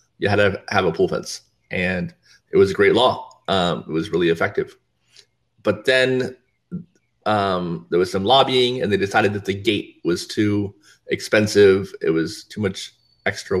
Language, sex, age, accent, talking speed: English, male, 30-49, American, 170 wpm